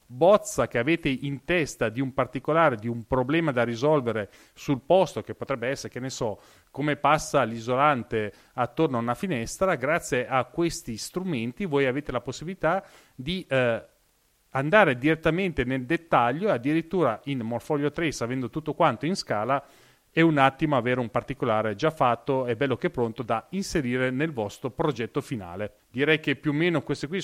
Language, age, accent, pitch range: Italian, 30-49, native, 125-160 Hz